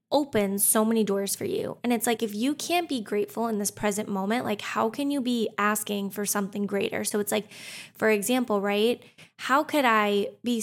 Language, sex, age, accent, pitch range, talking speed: English, female, 10-29, American, 205-240 Hz, 210 wpm